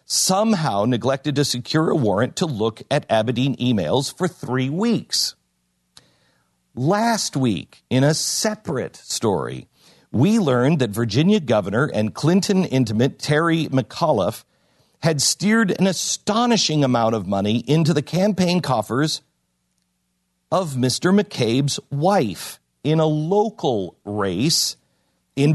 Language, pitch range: English, 120-170 Hz